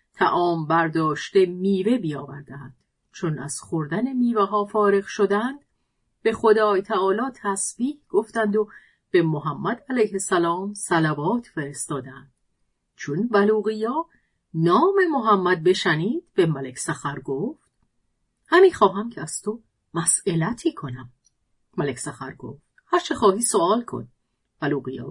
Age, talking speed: 40-59, 110 wpm